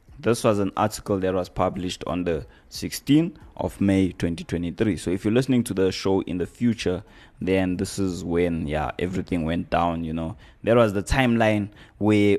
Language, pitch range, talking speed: English, 85-105 Hz, 185 wpm